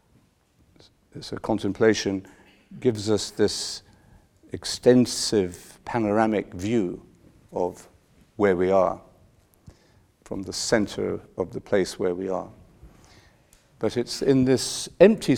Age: 50-69